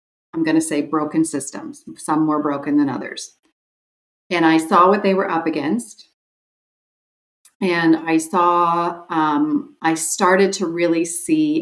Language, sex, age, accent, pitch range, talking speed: English, female, 40-59, American, 155-235 Hz, 145 wpm